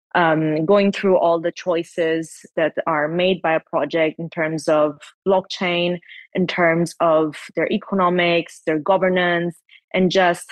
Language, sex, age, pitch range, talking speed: English, female, 20-39, 160-185 Hz, 145 wpm